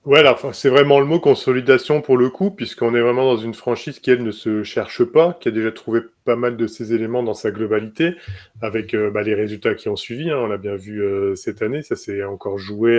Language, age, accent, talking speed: French, 20-39, French, 250 wpm